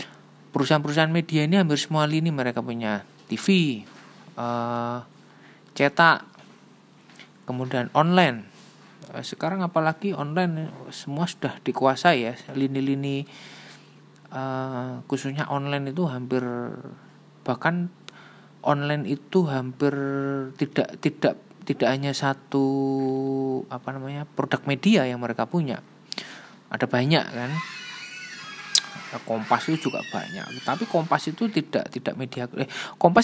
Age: 20-39